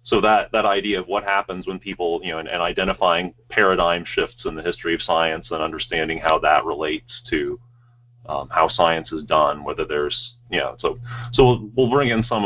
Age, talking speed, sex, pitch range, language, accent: 30-49, 205 wpm, male, 90-120 Hz, English, American